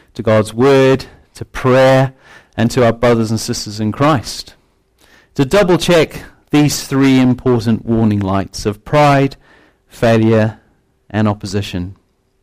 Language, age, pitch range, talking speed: English, 40-59, 100-130 Hz, 120 wpm